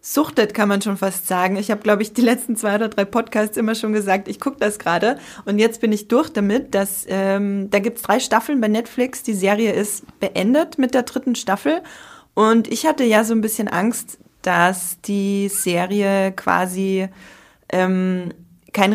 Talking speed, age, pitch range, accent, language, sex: 190 wpm, 20-39, 190-230 Hz, German, German, female